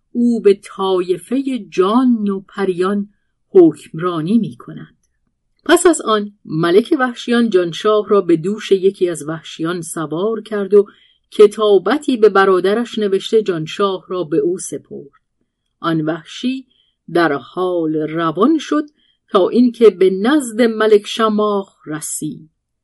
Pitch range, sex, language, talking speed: 185-240 Hz, female, Persian, 120 wpm